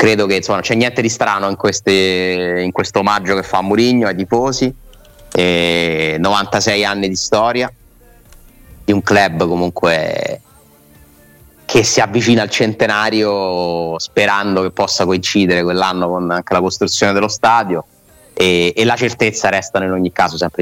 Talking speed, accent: 145 wpm, native